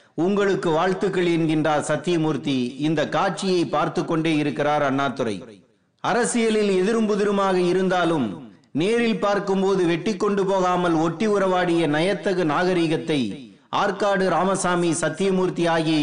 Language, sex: Tamil, male